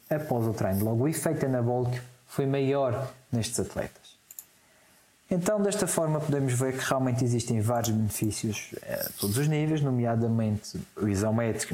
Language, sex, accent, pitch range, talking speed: Portuguese, male, Portuguese, 115-140 Hz, 145 wpm